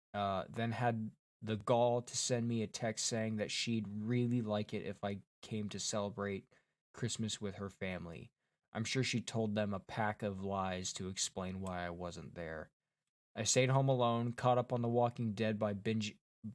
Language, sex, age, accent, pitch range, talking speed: English, male, 20-39, American, 100-120 Hz, 190 wpm